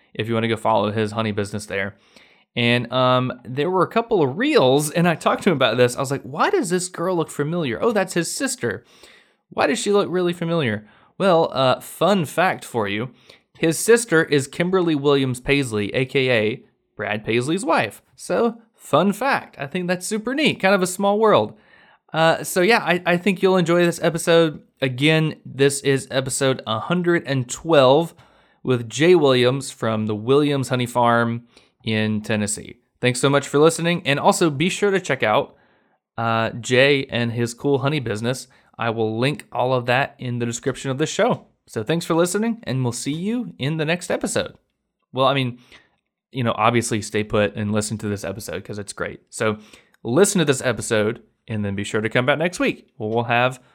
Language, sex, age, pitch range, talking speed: English, male, 20-39, 115-170 Hz, 195 wpm